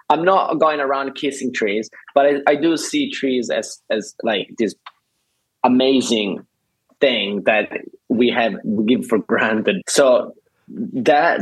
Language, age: English, 20-39